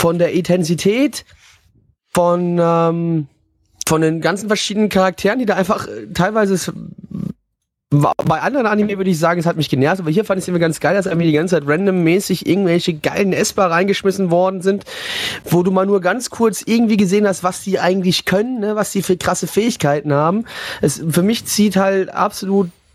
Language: German